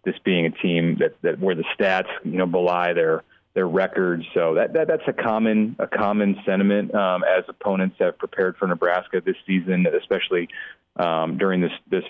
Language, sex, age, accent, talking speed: English, male, 30-49, American, 190 wpm